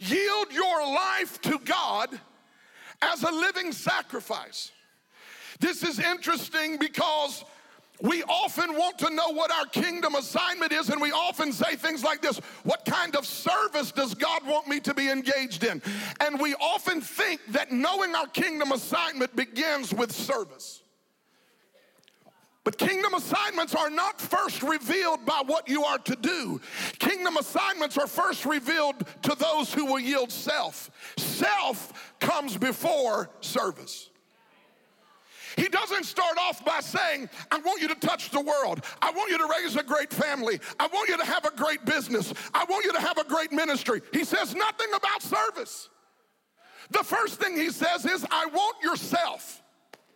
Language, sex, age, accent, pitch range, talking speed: English, male, 50-69, American, 285-350 Hz, 160 wpm